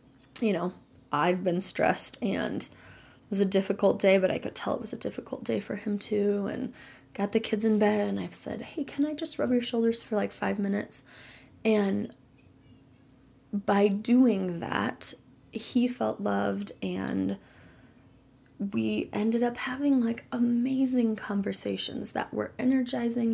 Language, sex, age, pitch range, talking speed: English, female, 20-39, 185-235 Hz, 155 wpm